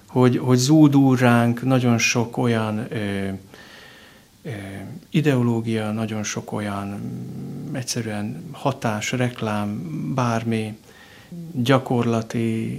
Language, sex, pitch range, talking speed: Hungarian, male, 110-125 Hz, 80 wpm